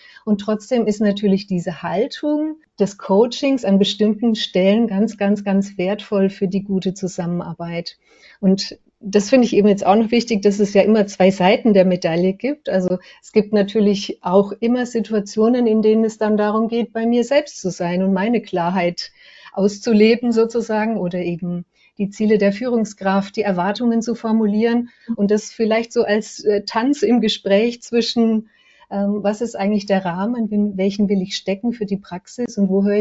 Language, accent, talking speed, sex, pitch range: German, German, 175 wpm, female, 190-220 Hz